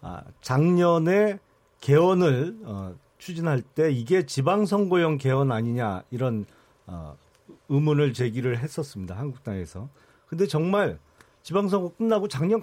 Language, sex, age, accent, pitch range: Korean, male, 40-59, native, 135-185 Hz